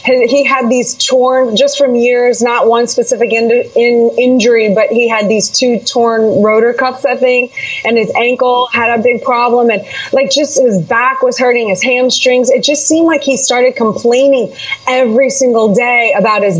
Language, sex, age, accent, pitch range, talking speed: English, female, 20-39, American, 220-260 Hz, 175 wpm